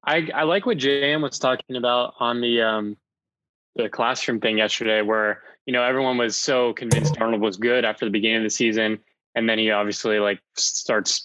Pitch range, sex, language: 105-120 Hz, male, English